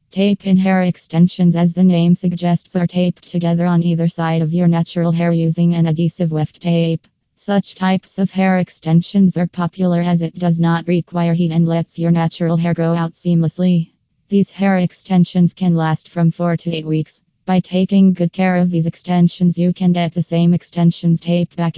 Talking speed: 190 wpm